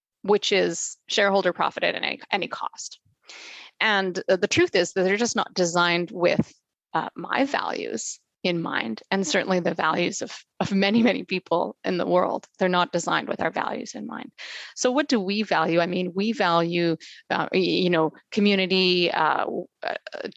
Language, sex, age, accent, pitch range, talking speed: English, female, 30-49, American, 180-215 Hz, 170 wpm